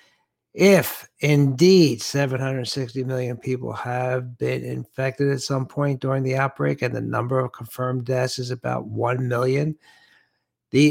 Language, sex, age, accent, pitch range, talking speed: English, male, 60-79, American, 120-140 Hz, 140 wpm